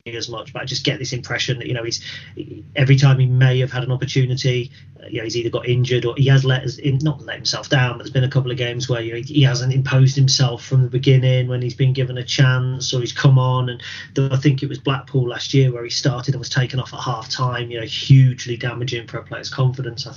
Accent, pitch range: British, 120-135 Hz